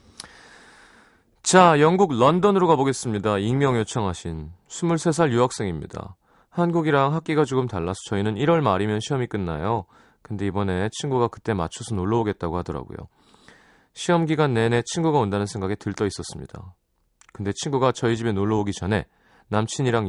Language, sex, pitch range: Korean, male, 100-155 Hz